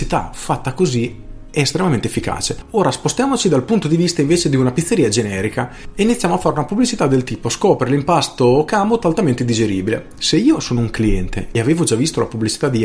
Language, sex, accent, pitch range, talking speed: Italian, male, native, 110-155 Hz, 190 wpm